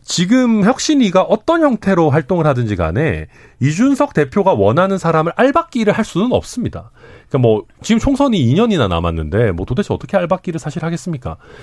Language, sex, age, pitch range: Korean, male, 30-49, 115-190 Hz